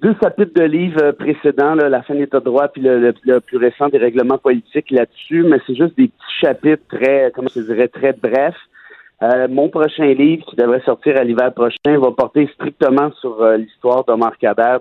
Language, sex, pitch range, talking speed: French, male, 125-150 Hz, 210 wpm